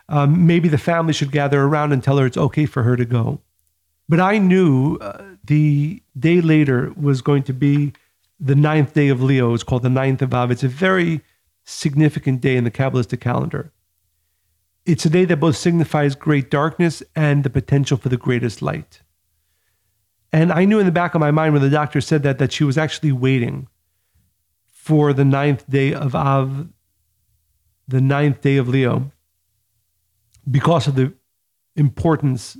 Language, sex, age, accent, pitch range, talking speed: English, male, 40-59, American, 120-155 Hz, 175 wpm